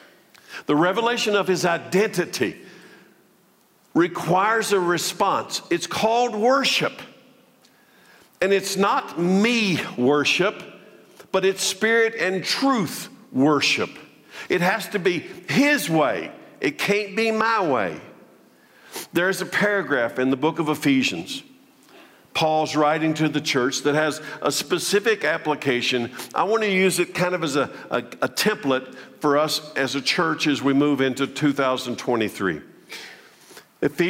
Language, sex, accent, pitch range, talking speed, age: English, male, American, 135-205 Hz, 125 wpm, 50-69